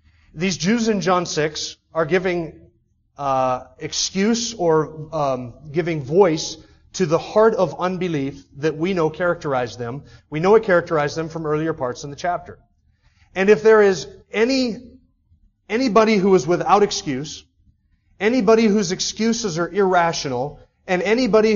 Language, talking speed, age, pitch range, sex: English, 140 wpm, 30-49, 155-205 Hz, male